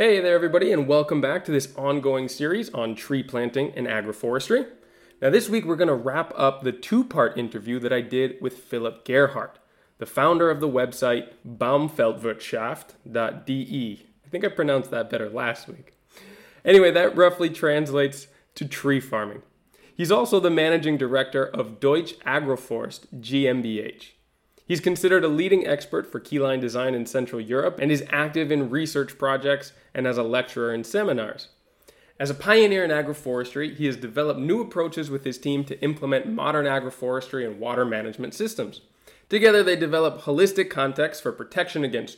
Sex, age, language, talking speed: male, 20-39, English, 160 wpm